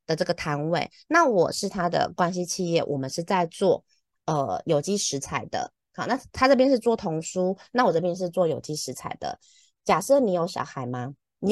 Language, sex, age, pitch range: Chinese, female, 20-39, 145-205 Hz